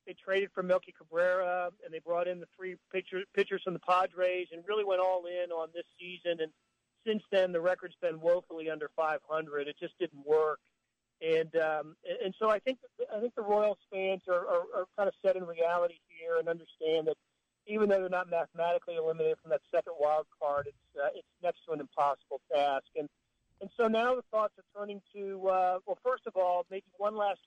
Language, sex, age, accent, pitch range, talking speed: English, male, 40-59, American, 160-195 Hz, 210 wpm